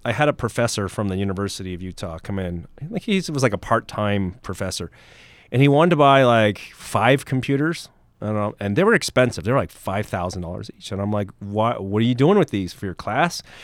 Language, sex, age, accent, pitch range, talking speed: English, male, 30-49, American, 95-130 Hz, 225 wpm